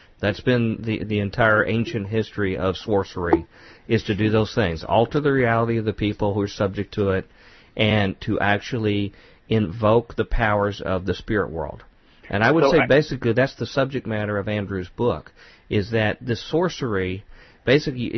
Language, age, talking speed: English, 40-59, 170 wpm